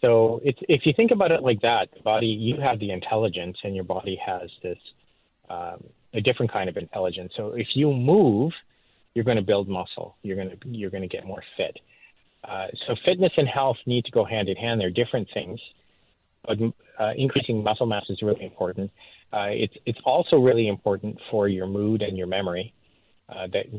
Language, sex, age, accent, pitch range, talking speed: English, male, 30-49, American, 95-115 Hz, 200 wpm